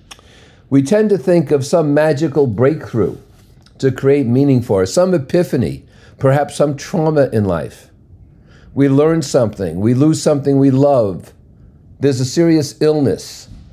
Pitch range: 125-165 Hz